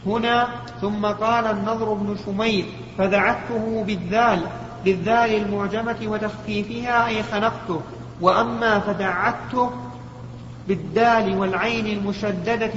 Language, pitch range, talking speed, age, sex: Arabic, 200-225 Hz, 85 wpm, 40-59, male